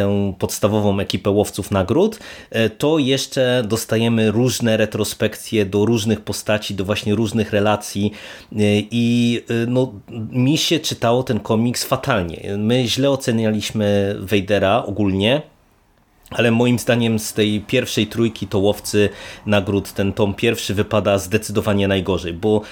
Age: 30-49